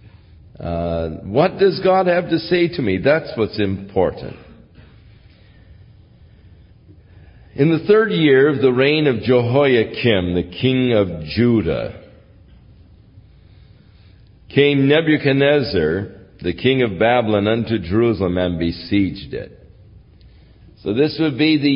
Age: 60-79